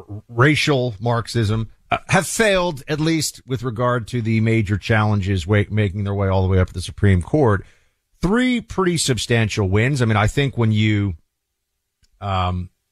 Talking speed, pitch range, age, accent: 165 wpm, 105-140 Hz, 40-59, American